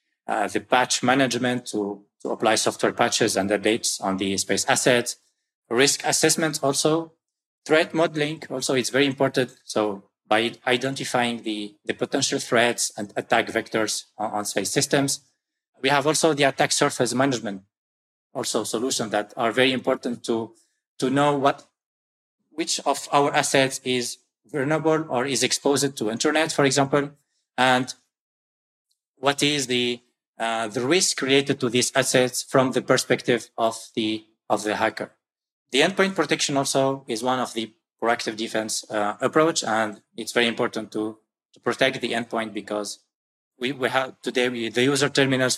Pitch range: 110-140 Hz